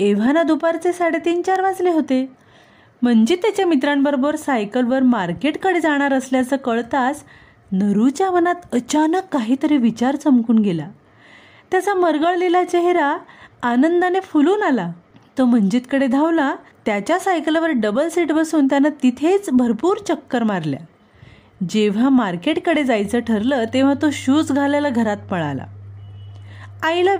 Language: Marathi